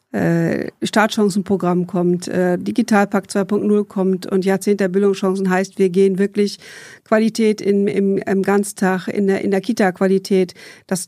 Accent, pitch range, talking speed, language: German, 190-215 Hz, 130 wpm, German